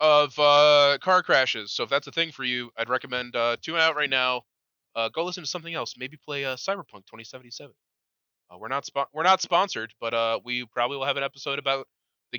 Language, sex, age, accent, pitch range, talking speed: English, male, 20-39, American, 110-140 Hz, 230 wpm